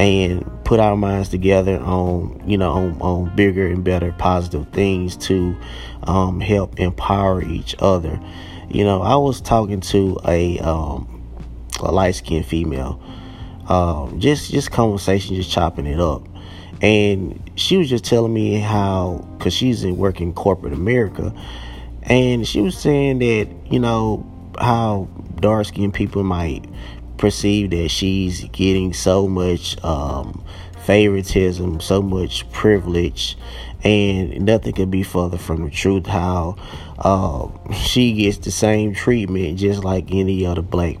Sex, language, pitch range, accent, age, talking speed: male, English, 85-100 Hz, American, 30-49, 140 wpm